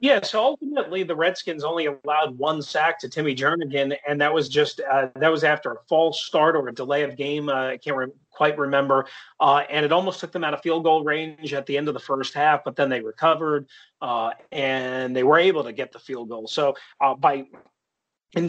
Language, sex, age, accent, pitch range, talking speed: English, male, 30-49, American, 135-160 Hz, 225 wpm